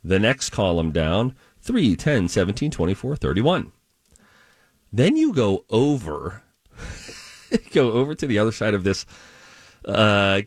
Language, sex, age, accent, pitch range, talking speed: English, male, 40-59, American, 100-130 Hz, 125 wpm